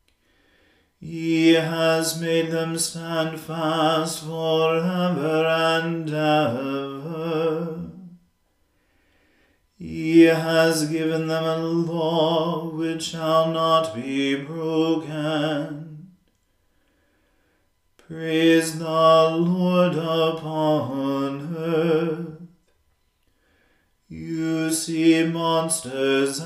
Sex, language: male, English